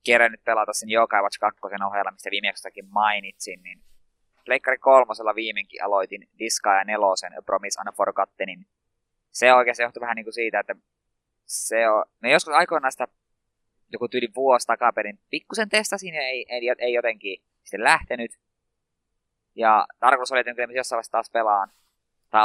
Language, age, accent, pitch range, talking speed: Finnish, 20-39, native, 105-125 Hz, 160 wpm